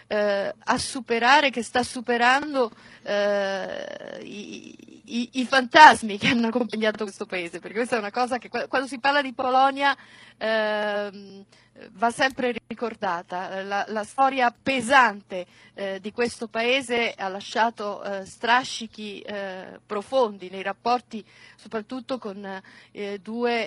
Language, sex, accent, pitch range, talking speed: Italian, female, native, 200-245 Hz, 130 wpm